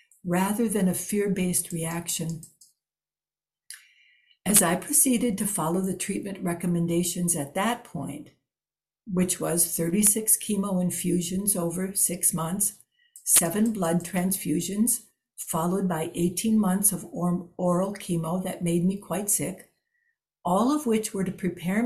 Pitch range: 180-225 Hz